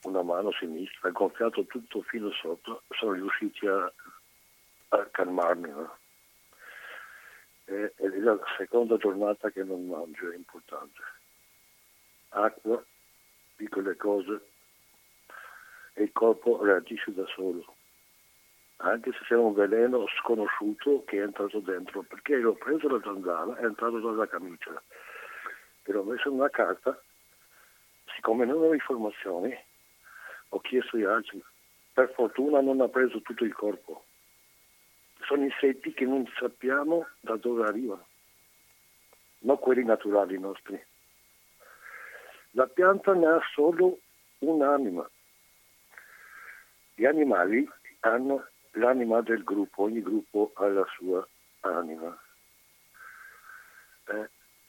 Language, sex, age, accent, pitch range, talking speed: Italian, male, 60-79, native, 105-140 Hz, 115 wpm